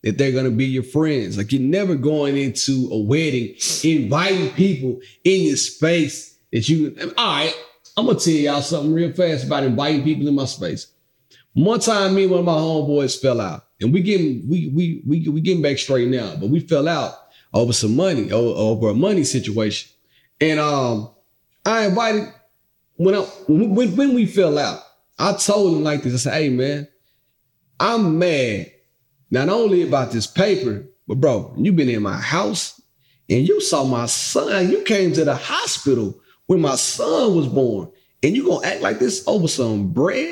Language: English